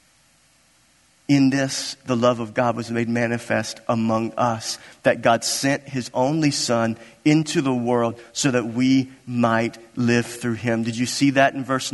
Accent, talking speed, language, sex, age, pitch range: American, 165 wpm, English, male, 40-59, 120-180 Hz